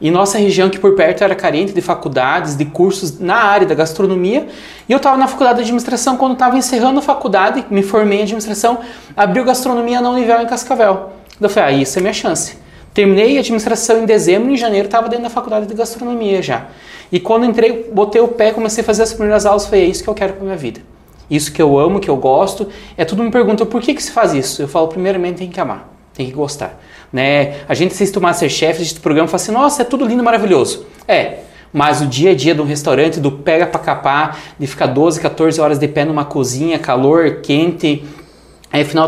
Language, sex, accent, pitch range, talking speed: Portuguese, male, Brazilian, 155-220 Hz, 235 wpm